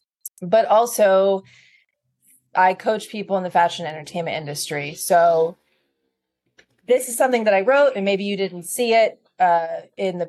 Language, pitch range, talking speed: English, 175-215 Hz, 155 wpm